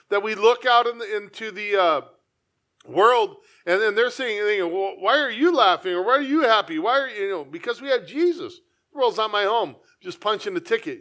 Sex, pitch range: male, 200-285 Hz